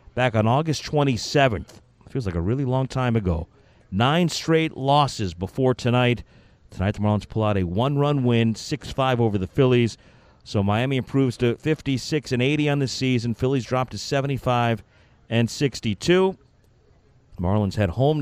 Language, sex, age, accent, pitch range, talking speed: English, male, 50-69, American, 105-130 Hz, 155 wpm